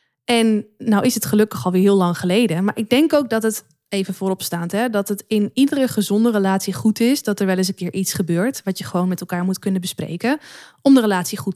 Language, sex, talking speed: Dutch, female, 235 wpm